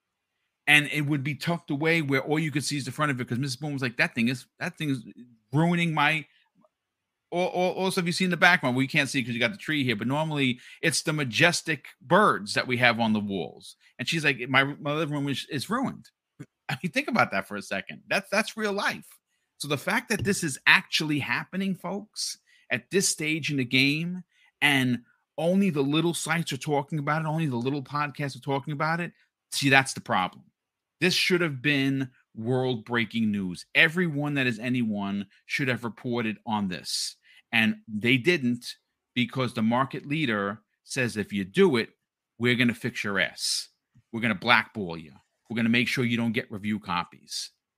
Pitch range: 115-155 Hz